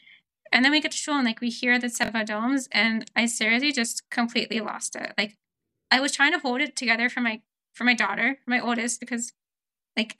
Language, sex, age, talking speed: English, female, 10-29, 220 wpm